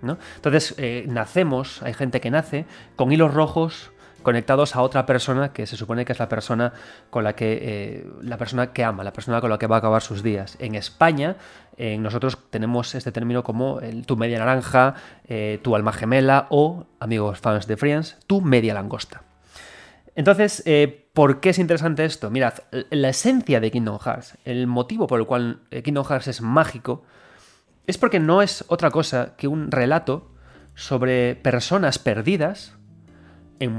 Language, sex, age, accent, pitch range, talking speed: Spanish, male, 30-49, Spanish, 115-155 Hz, 175 wpm